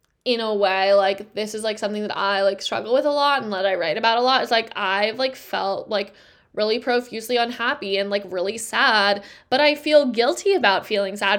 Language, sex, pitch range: English, female, 215-260 Hz